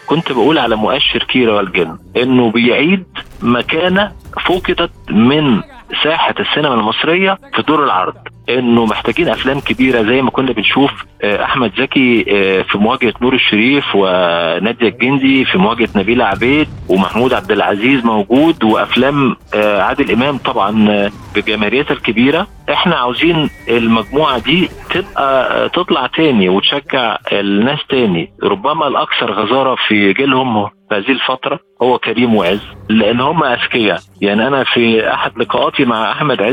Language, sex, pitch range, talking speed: Arabic, male, 105-135 Hz, 125 wpm